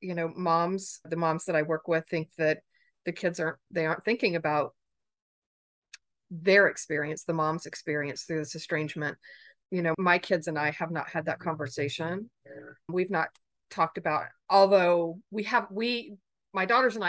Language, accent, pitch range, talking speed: English, American, 155-195 Hz, 170 wpm